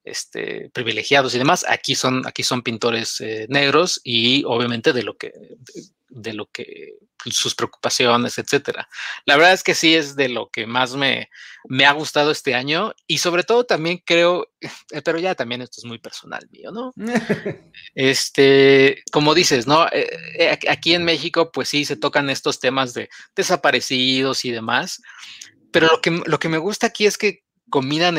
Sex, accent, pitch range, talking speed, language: male, Mexican, 130-170 Hz, 170 wpm, Spanish